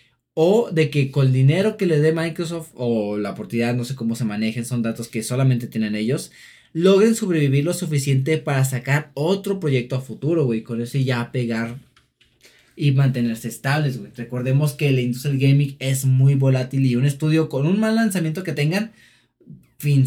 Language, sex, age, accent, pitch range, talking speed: Spanish, male, 20-39, Mexican, 130-170 Hz, 185 wpm